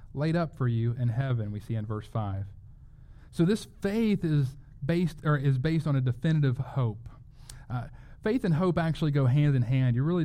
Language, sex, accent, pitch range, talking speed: English, male, American, 120-150 Hz, 200 wpm